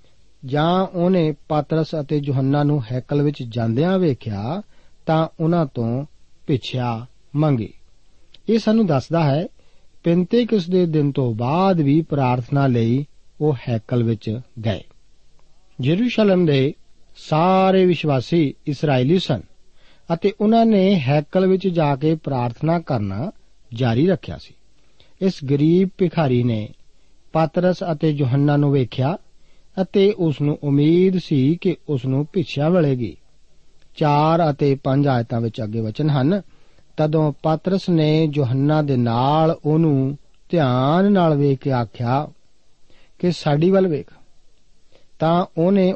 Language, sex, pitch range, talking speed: Punjabi, male, 130-170 Hz, 100 wpm